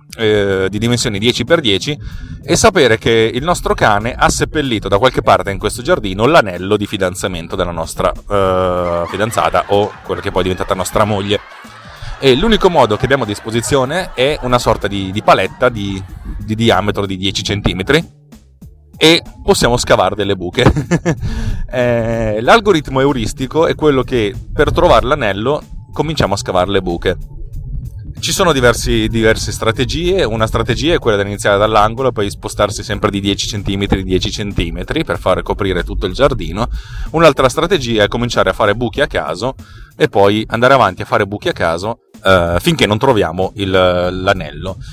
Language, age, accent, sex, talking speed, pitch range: Italian, 30-49, native, male, 165 wpm, 100-125 Hz